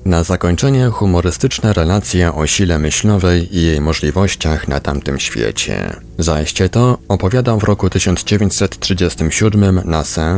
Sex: male